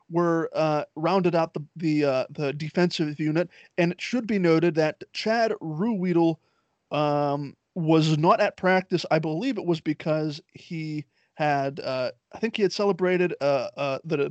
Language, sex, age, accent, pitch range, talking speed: English, male, 30-49, American, 150-175 Hz, 165 wpm